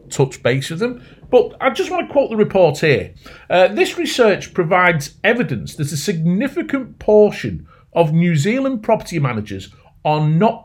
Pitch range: 150-245 Hz